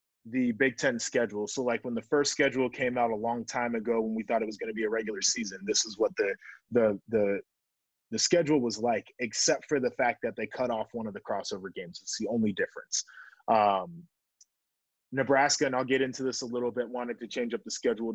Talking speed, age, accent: 230 wpm, 20-39, American